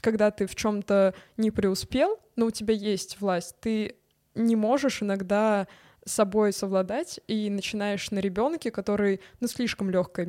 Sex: female